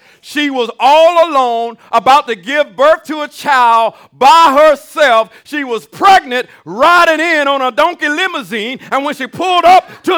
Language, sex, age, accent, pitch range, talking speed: English, male, 50-69, American, 280-350 Hz, 165 wpm